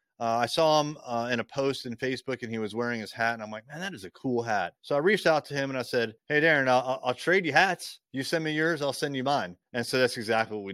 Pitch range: 110-160 Hz